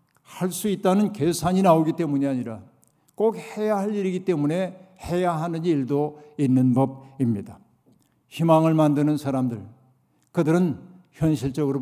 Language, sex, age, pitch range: Korean, male, 60-79, 140-185 Hz